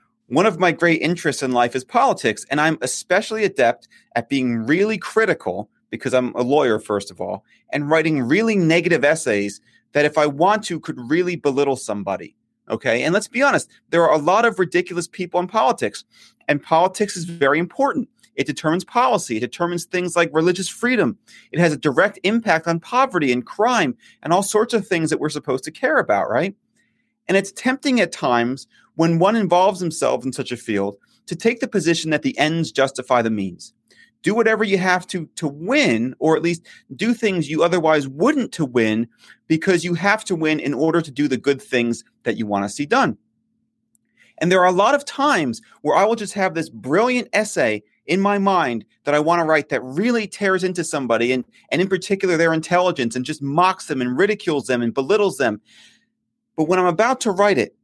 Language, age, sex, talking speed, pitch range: English, 30-49, male, 205 wpm, 140-210 Hz